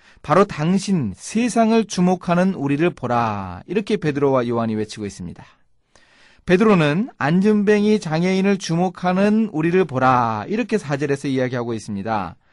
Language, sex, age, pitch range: Korean, male, 30-49, 135-195 Hz